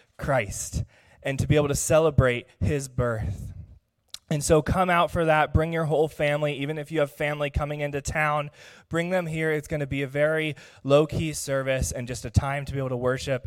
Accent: American